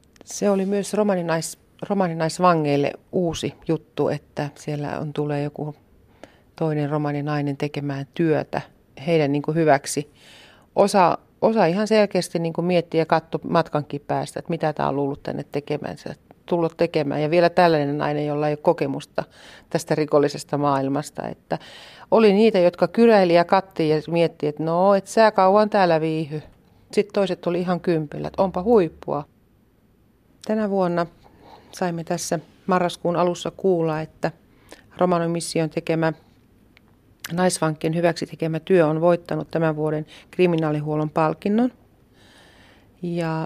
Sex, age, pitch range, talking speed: female, 40-59, 150-175 Hz, 130 wpm